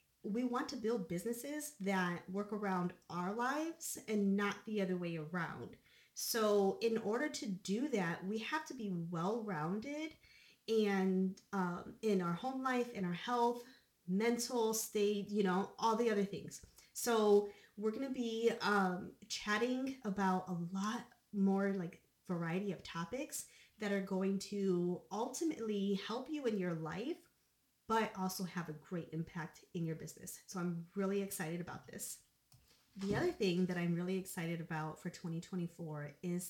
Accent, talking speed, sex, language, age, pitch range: American, 155 wpm, female, English, 30-49, 175-220 Hz